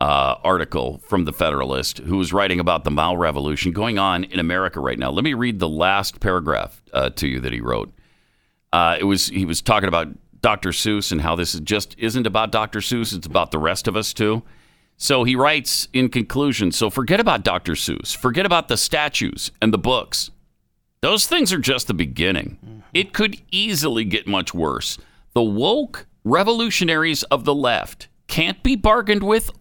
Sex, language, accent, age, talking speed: male, English, American, 50-69, 190 wpm